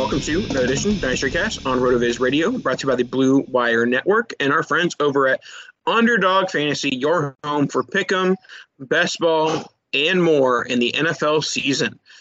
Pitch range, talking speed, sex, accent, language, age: 130-160 Hz, 185 wpm, male, American, English, 20-39